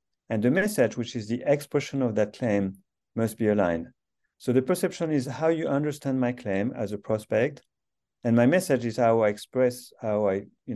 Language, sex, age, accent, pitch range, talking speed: English, male, 40-59, French, 105-135 Hz, 195 wpm